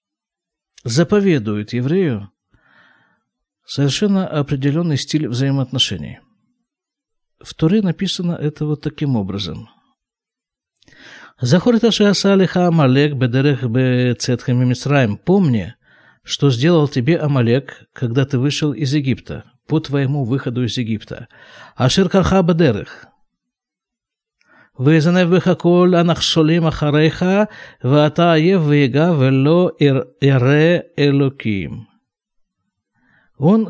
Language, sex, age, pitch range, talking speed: Russian, male, 50-69, 130-175 Hz, 60 wpm